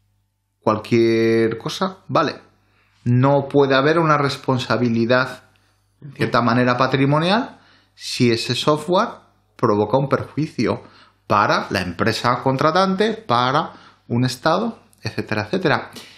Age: 30-49